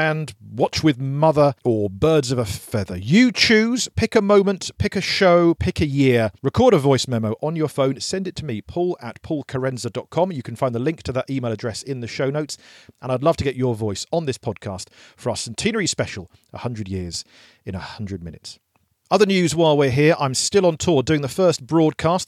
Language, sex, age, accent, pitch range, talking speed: English, male, 40-59, British, 120-175 Hz, 215 wpm